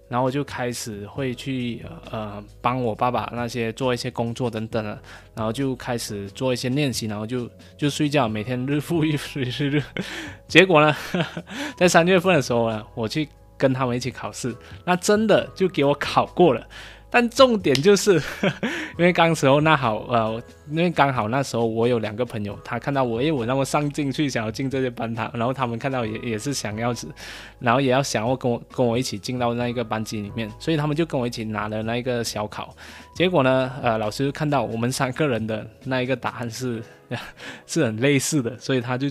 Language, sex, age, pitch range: Chinese, male, 20-39, 110-145 Hz